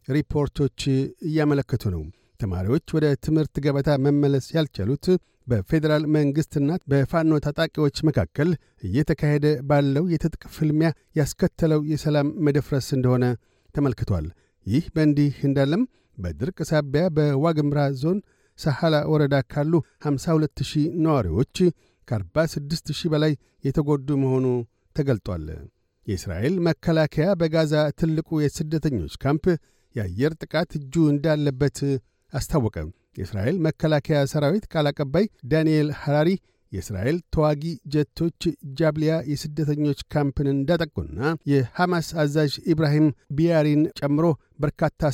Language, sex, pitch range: Amharic, male, 135-160 Hz